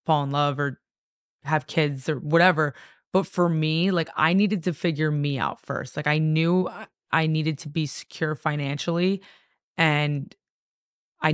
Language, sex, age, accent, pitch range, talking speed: English, female, 20-39, American, 145-170 Hz, 160 wpm